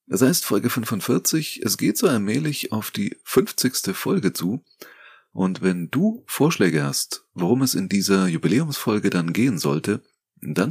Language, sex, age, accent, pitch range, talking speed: German, male, 30-49, German, 85-110 Hz, 155 wpm